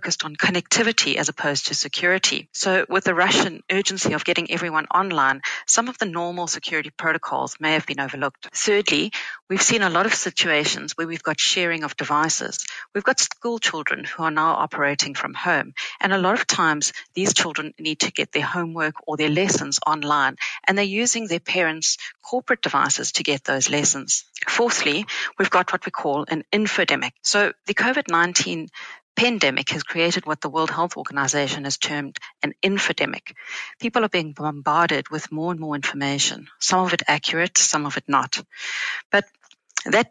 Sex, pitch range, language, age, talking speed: female, 150-190 Hz, English, 40-59, 175 wpm